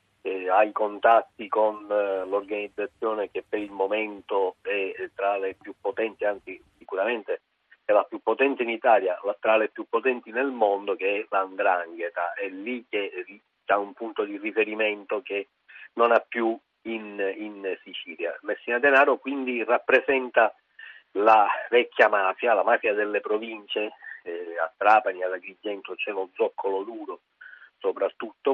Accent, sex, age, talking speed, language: native, male, 50-69, 145 wpm, Italian